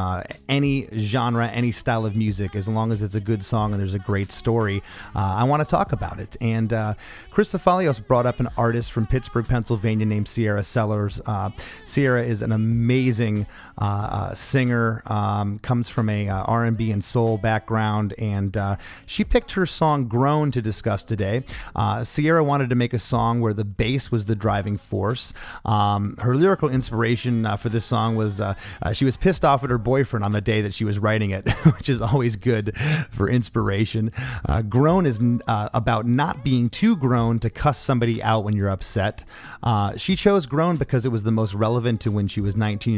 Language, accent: English, American